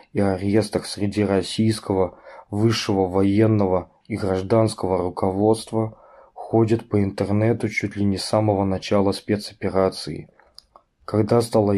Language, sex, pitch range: Russian, male, 95-110 Hz